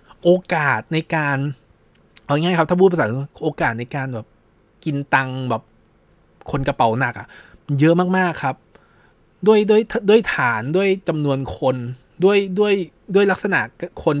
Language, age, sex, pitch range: Thai, 20-39, male, 120-160 Hz